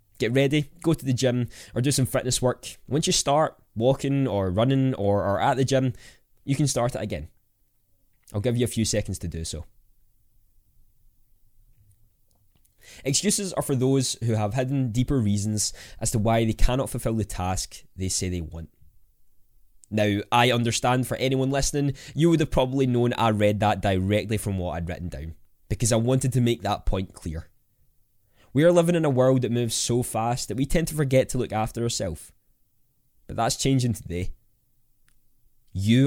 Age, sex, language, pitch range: 20-39, male, English, 95-125 Hz